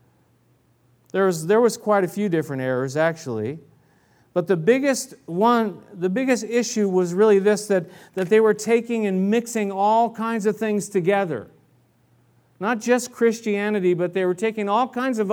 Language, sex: English, male